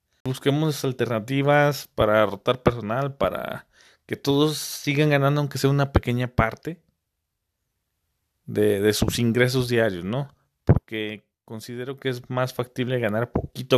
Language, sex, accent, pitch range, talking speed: Spanish, male, Mexican, 110-135 Hz, 125 wpm